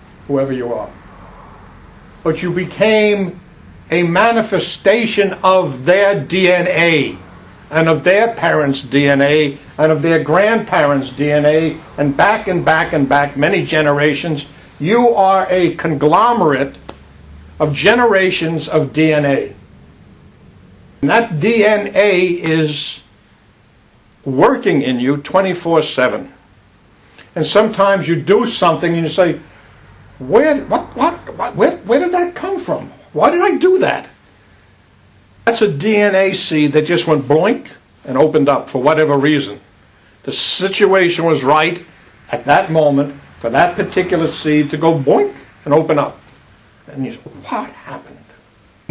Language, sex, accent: English, male, American